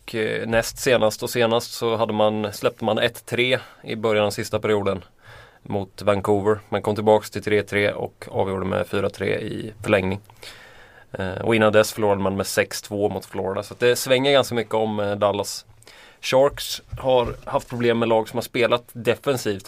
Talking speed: 170 wpm